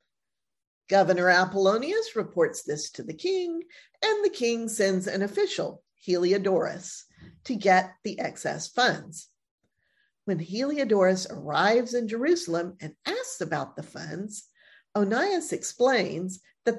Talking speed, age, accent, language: 115 wpm, 50-69, American, English